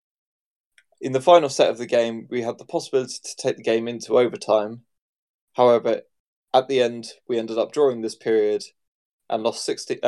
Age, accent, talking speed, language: 20-39, British, 180 wpm, English